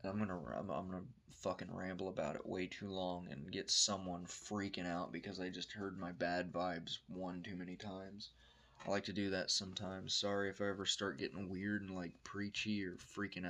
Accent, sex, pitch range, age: American, male, 90-105 Hz, 20-39